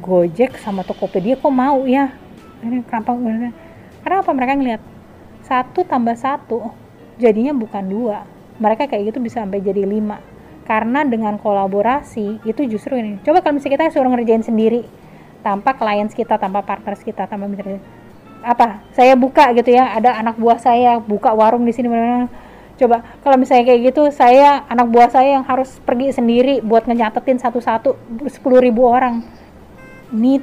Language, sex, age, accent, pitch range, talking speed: Indonesian, female, 20-39, native, 210-255 Hz, 155 wpm